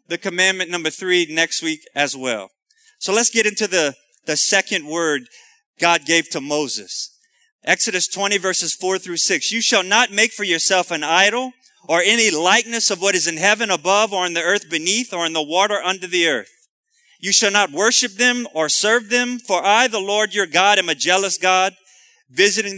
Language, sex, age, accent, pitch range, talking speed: English, male, 30-49, American, 180-240 Hz, 195 wpm